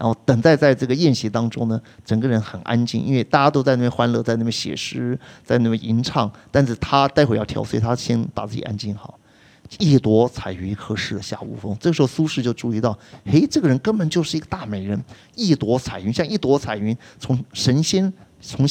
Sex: male